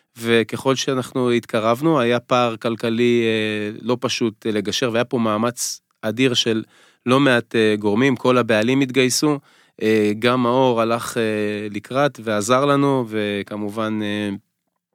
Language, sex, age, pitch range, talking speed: Hebrew, male, 20-39, 110-130 Hz, 110 wpm